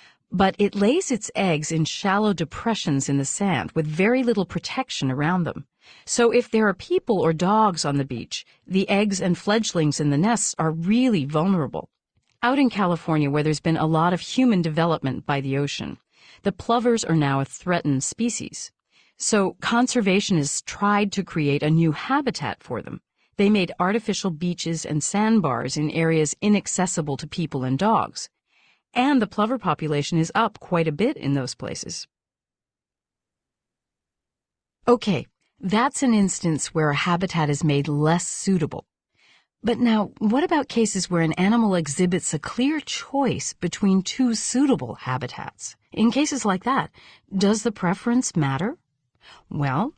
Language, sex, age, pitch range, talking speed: English, female, 40-59, 155-220 Hz, 155 wpm